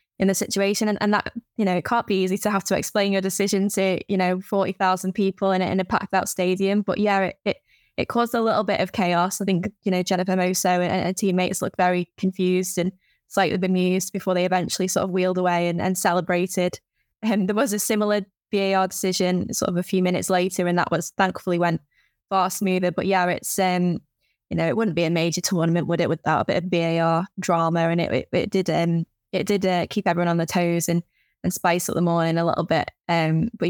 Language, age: English, 10-29